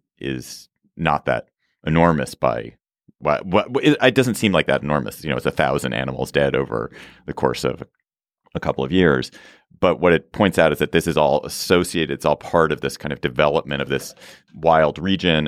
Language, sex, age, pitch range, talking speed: English, male, 30-49, 65-80 Hz, 195 wpm